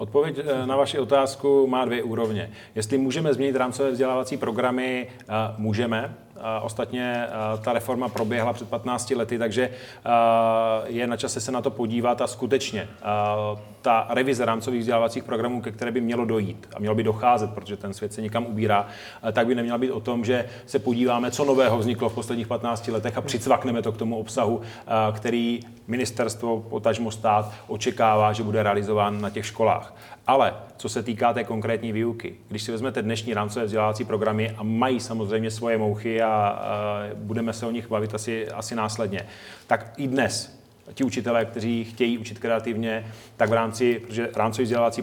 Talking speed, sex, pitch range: 170 wpm, male, 110-125 Hz